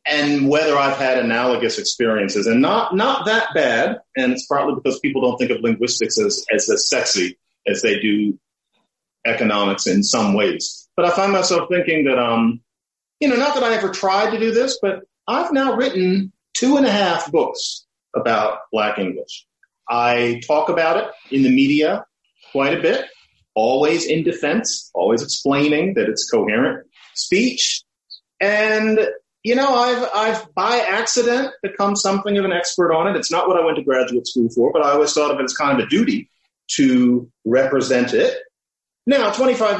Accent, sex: American, male